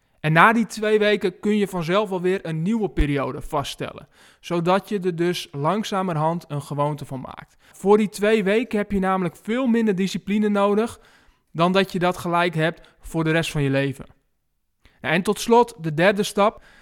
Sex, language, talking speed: male, Dutch, 180 wpm